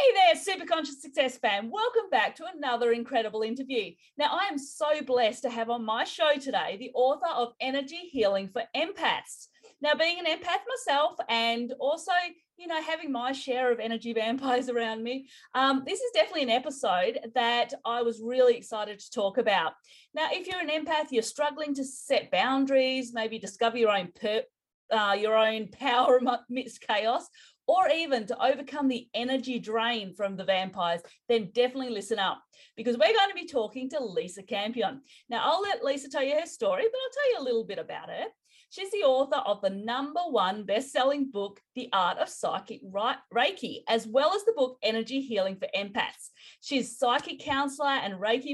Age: 30-49